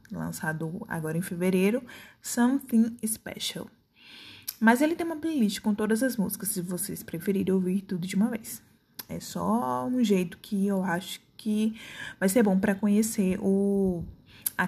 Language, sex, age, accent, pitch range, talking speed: Portuguese, female, 20-39, Brazilian, 190-230 Hz, 150 wpm